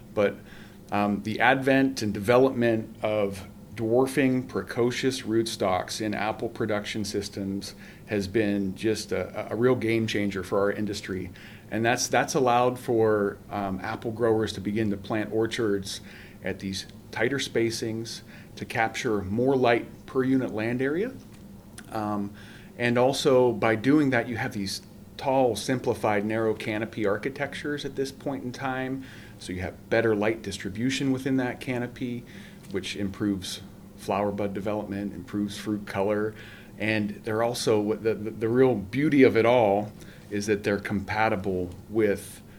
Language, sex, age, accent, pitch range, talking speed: English, male, 40-59, American, 100-115 Hz, 145 wpm